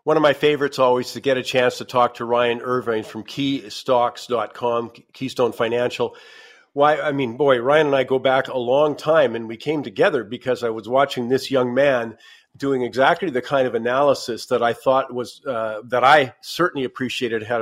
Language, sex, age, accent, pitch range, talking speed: English, male, 50-69, American, 120-145 Hz, 195 wpm